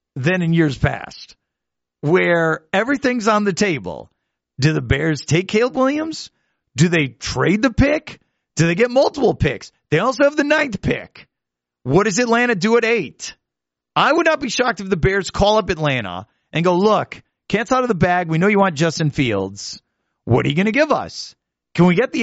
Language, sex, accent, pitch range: English, male, American, 130-200 Hz